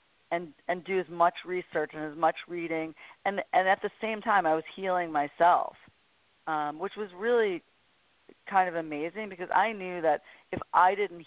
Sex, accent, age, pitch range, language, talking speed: female, American, 40-59, 150-180 Hz, English, 180 wpm